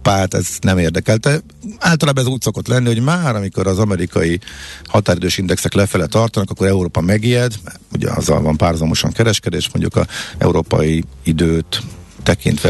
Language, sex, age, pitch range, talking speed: Hungarian, male, 50-69, 85-115 Hz, 150 wpm